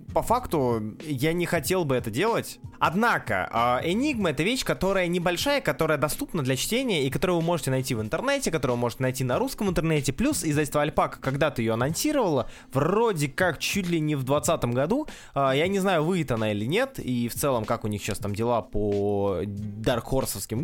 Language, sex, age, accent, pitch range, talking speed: Russian, male, 20-39, native, 125-175 Hz, 190 wpm